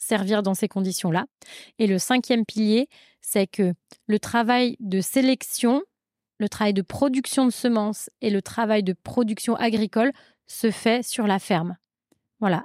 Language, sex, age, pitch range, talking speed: French, female, 20-39, 195-240 Hz, 150 wpm